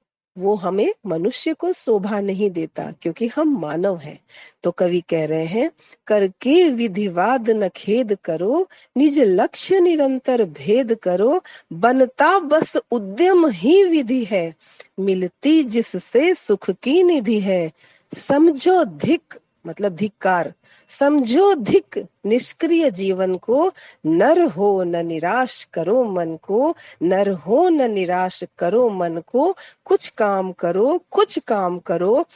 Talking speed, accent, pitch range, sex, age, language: 120 wpm, native, 185-285 Hz, female, 50-69, Hindi